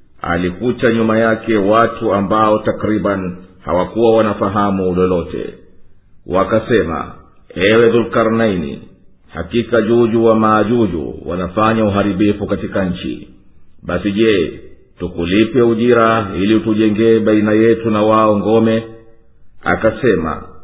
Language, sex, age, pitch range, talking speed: Swahili, male, 50-69, 100-115 Hz, 95 wpm